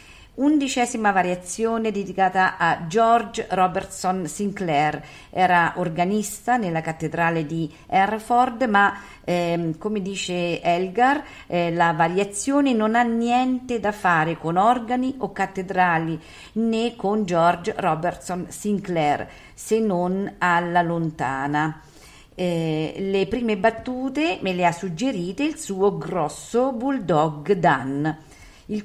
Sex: female